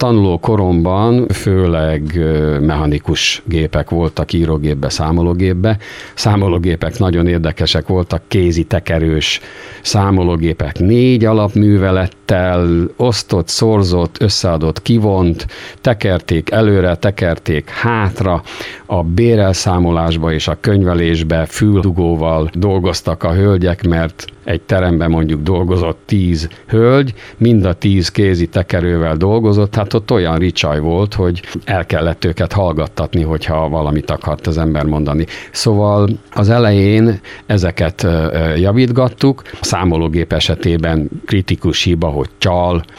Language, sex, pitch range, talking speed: Hungarian, male, 80-105 Hz, 105 wpm